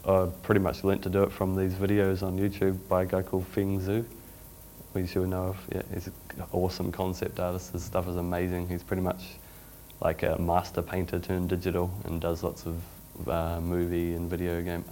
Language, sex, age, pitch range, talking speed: English, male, 30-49, 85-95 Hz, 200 wpm